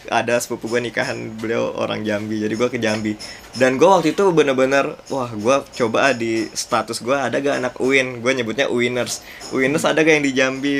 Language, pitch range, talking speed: Indonesian, 120-150 Hz, 190 wpm